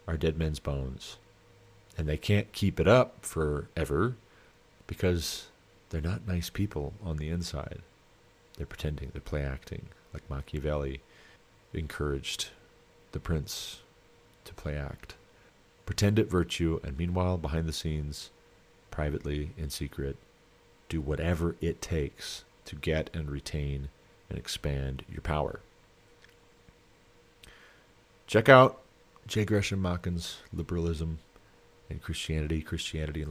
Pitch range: 75-95 Hz